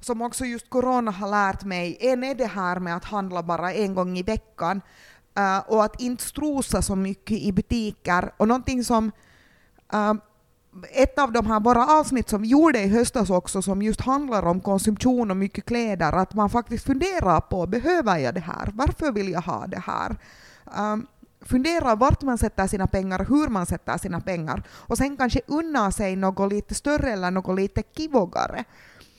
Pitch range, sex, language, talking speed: 180-245 Hz, female, Swedish, 180 wpm